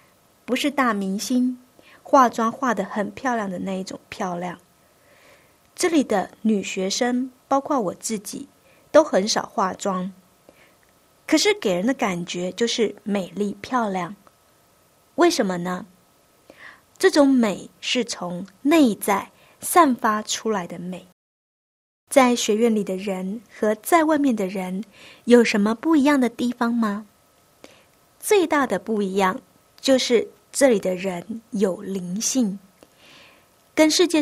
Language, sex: Chinese, female